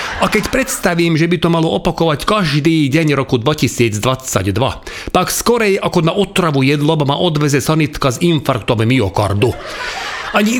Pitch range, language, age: 115-170 Hz, Slovak, 40-59